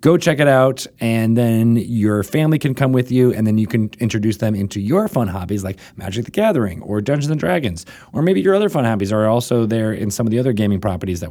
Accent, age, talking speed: American, 30-49, 250 wpm